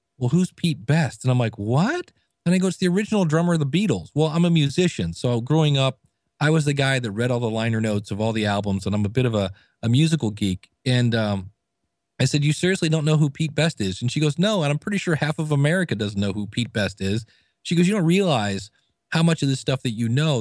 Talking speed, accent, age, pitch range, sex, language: 265 wpm, American, 40-59, 110-155 Hz, male, English